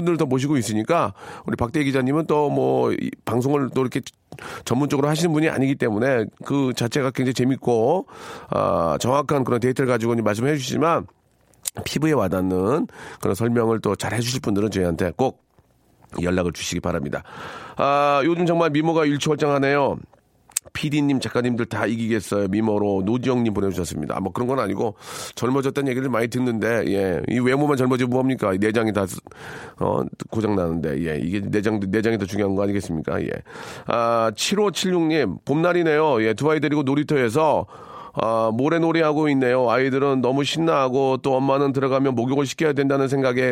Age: 40-59